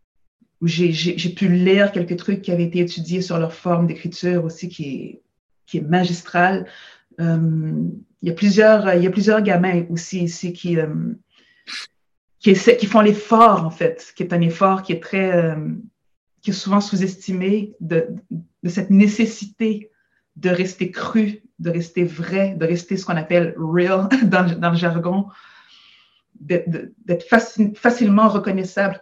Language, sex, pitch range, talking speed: French, female, 170-200 Hz, 165 wpm